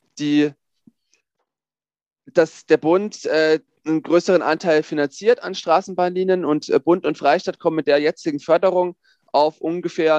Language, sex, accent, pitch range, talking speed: German, male, German, 155-180 Hz, 135 wpm